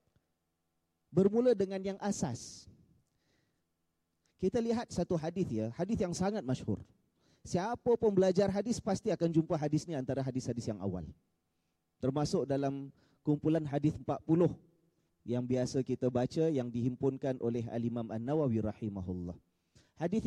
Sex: male